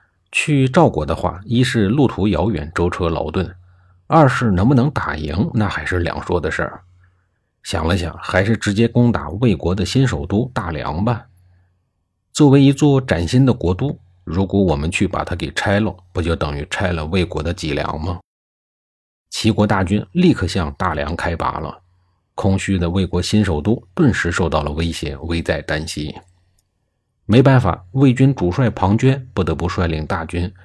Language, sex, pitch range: Chinese, male, 85-115 Hz